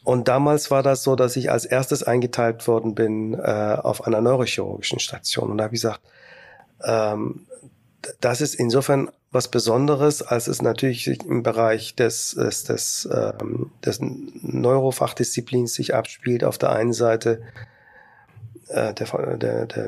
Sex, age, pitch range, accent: male, 40-59, 115-130 Hz, German